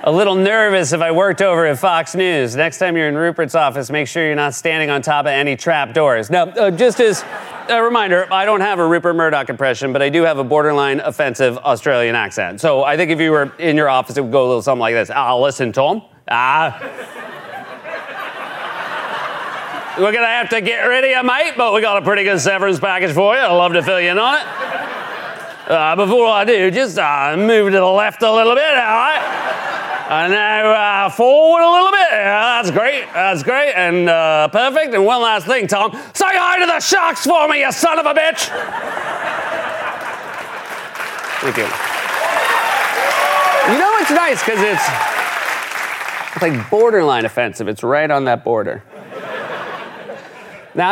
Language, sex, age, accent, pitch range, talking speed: English, male, 30-49, American, 150-230 Hz, 195 wpm